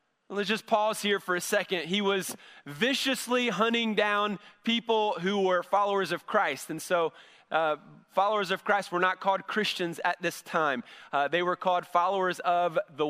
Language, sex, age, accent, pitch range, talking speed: English, male, 30-49, American, 180-230 Hz, 175 wpm